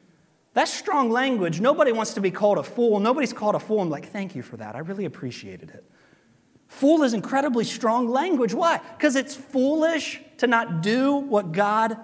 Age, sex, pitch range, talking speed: 30-49, male, 145-210 Hz, 190 wpm